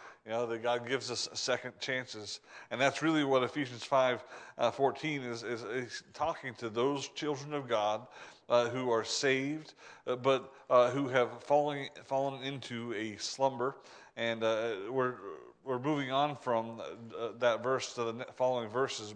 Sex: male